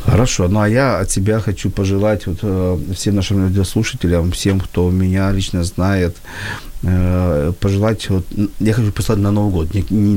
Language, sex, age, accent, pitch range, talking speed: Ukrainian, male, 40-59, native, 95-115 Hz, 170 wpm